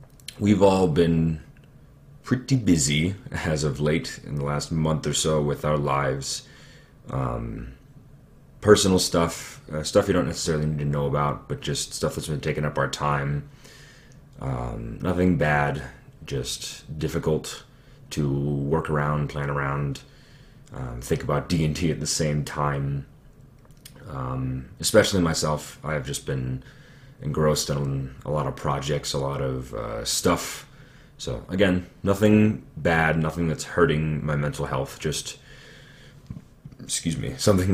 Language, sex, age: English, male, 30-49